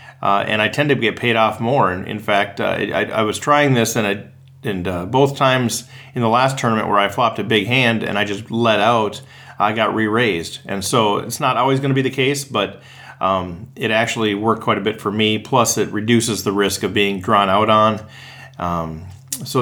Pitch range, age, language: 105-130 Hz, 40-59, English